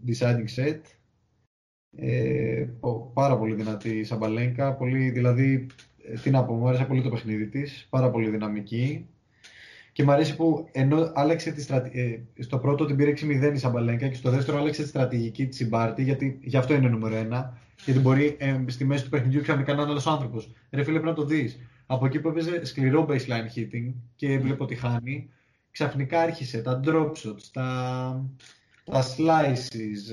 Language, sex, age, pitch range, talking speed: Greek, male, 20-39, 120-145 Hz, 175 wpm